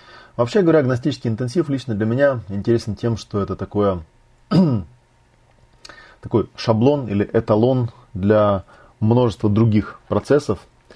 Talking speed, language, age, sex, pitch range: 110 wpm, Russian, 30-49, male, 100-120 Hz